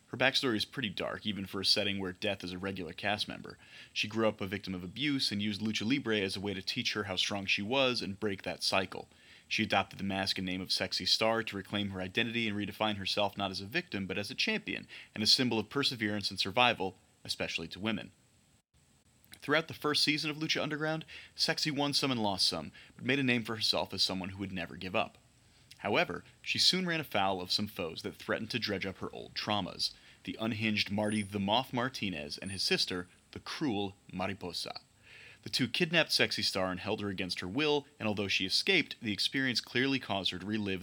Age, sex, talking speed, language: 30-49, male, 220 wpm, English